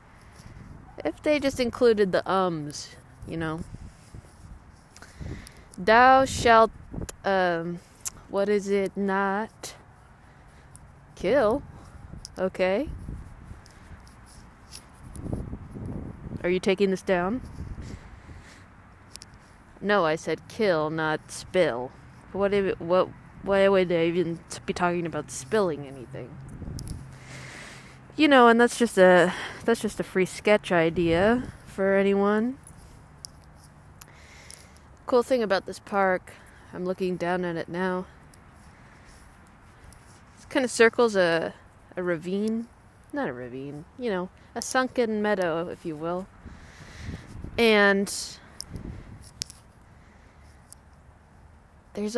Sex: female